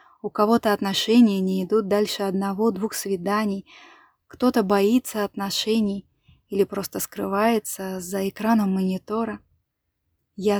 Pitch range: 195-225 Hz